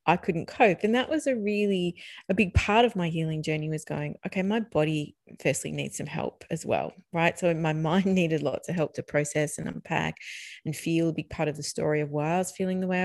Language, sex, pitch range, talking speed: English, female, 155-190 Hz, 245 wpm